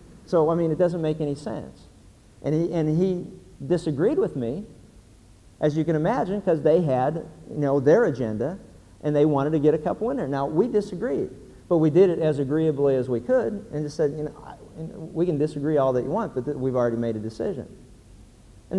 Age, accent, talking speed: 50-69, American, 225 wpm